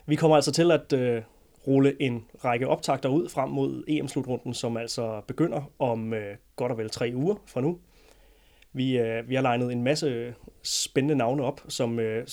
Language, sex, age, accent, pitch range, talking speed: Danish, male, 30-49, native, 120-145 Hz, 185 wpm